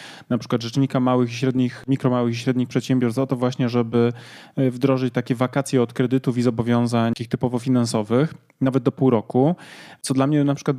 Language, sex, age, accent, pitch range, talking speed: Polish, male, 20-39, native, 125-145 Hz, 185 wpm